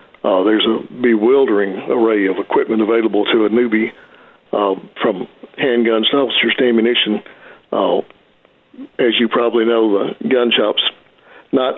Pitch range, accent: 110-120 Hz, American